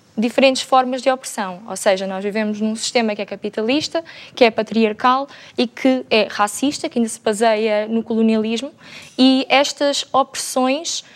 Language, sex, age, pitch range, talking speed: Portuguese, female, 20-39, 230-265 Hz, 155 wpm